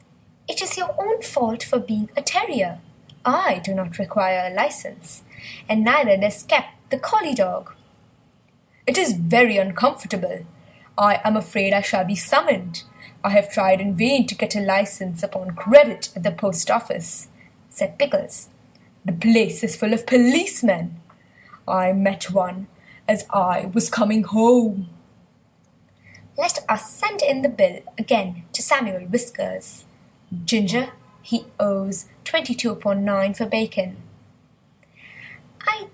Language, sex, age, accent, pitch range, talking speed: English, female, 20-39, Indian, 195-250 Hz, 140 wpm